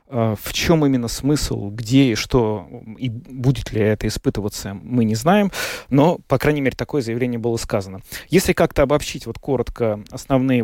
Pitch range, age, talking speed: 110-135 Hz, 30-49, 165 wpm